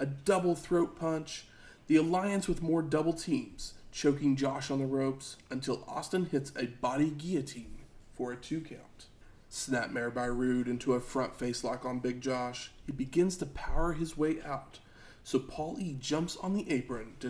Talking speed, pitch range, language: 175 wpm, 120-150 Hz, English